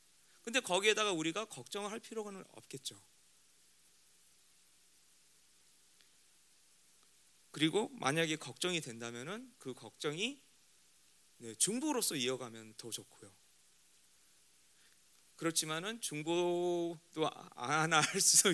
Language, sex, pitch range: Korean, male, 115-175 Hz